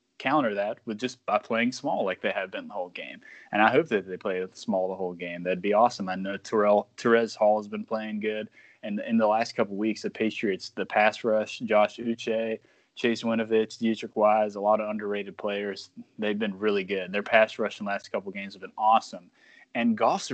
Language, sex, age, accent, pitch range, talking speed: English, male, 20-39, American, 105-120 Hz, 220 wpm